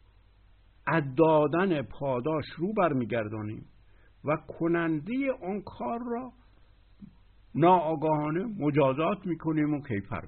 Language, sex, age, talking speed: Persian, male, 60-79, 80 wpm